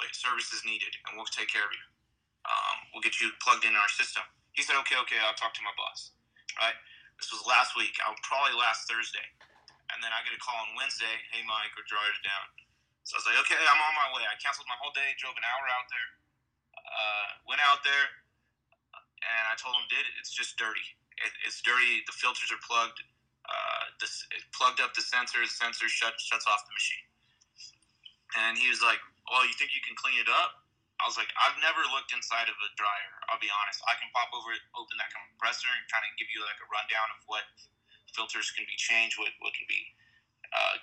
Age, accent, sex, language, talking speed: 30-49, American, male, English, 225 wpm